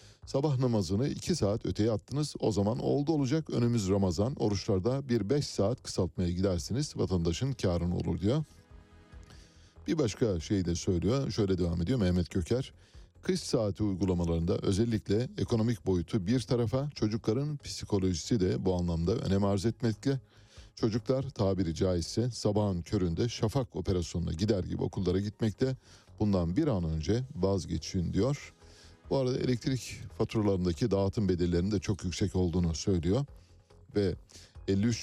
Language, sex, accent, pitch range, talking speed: Turkish, male, native, 90-115 Hz, 135 wpm